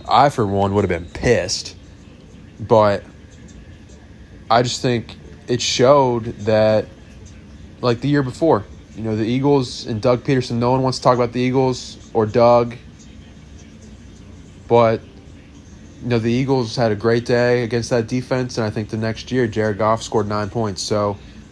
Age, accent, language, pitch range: 20-39, American, English, 105-125 Hz